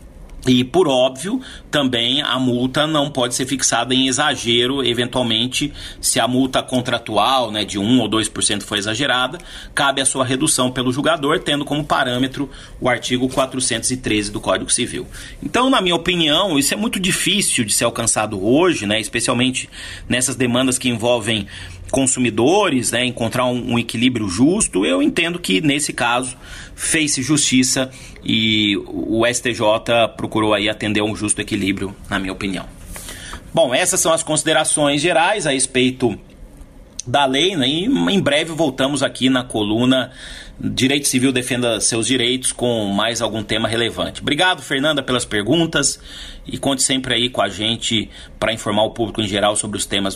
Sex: male